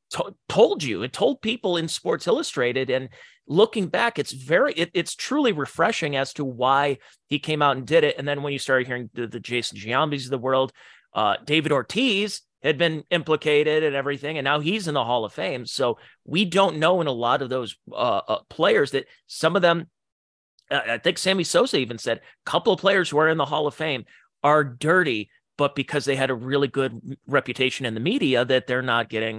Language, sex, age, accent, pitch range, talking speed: English, male, 30-49, American, 125-170 Hz, 215 wpm